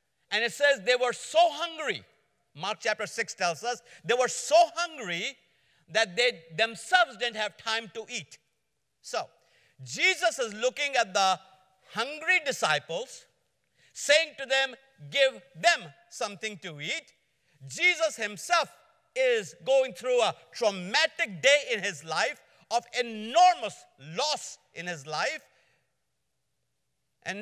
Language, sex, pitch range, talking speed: English, male, 200-310 Hz, 125 wpm